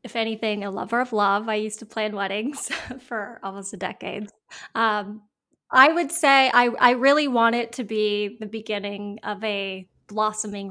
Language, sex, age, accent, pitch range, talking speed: English, female, 20-39, American, 200-225 Hz, 175 wpm